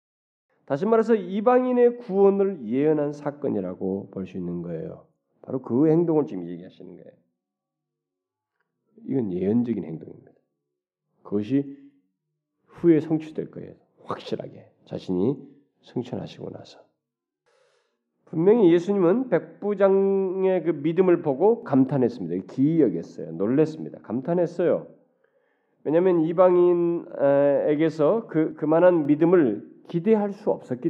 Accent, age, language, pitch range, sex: native, 40-59, Korean, 120-190 Hz, male